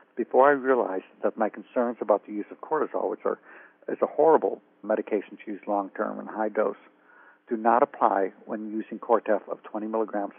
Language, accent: English, American